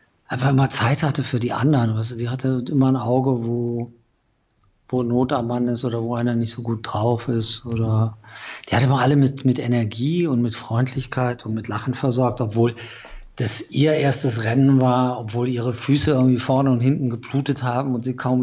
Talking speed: 200 wpm